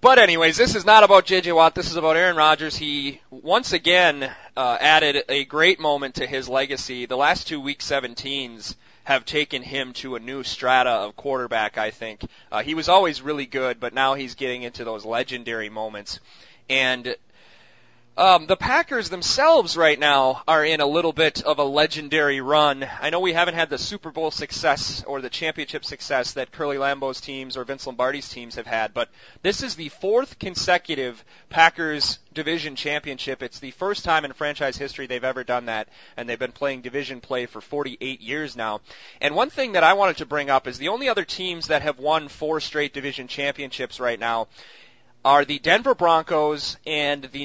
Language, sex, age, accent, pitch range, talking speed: English, male, 30-49, American, 125-155 Hz, 190 wpm